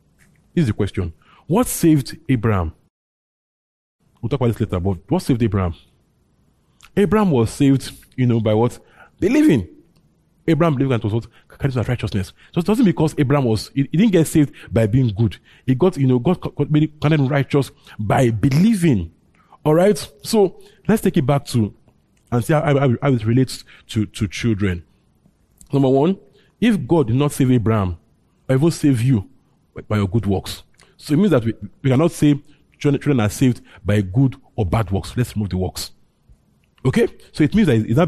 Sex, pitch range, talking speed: male, 110-150 Hz, 180 wpm